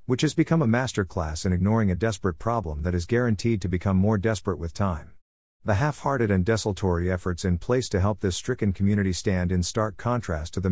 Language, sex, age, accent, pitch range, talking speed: English, male, 50-69, American, 90-115 Hz, 205 wpm